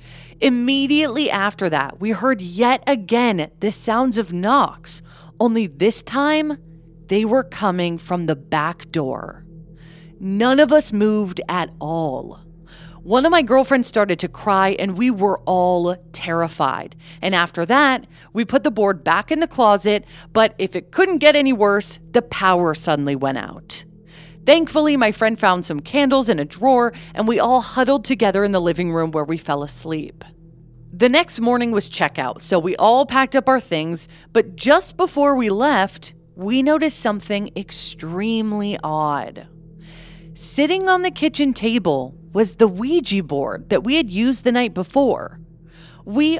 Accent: American